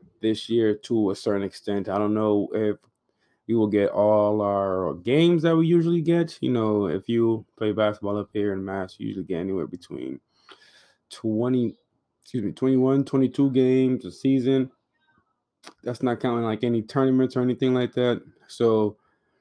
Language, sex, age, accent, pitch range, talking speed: English, male, 20-39, American, 100-120 Hz, 165 wpm